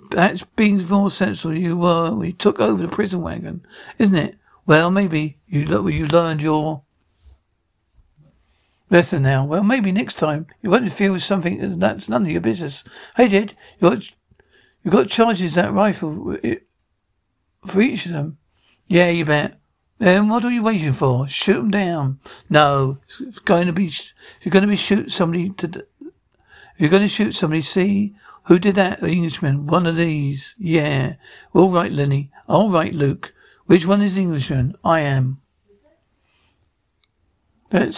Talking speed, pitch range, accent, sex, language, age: 175 wpm, 155-200 Hz, British, male, English, 60-79